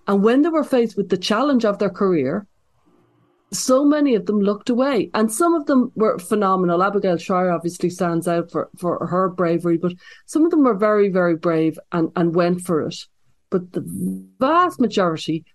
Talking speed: 190 wpm